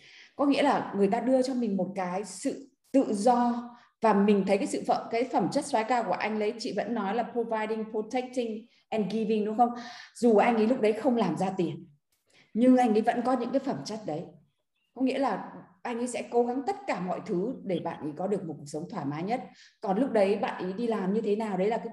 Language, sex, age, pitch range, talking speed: Vietnamese, female, 20-39, 185-240 Hz, 250 wpm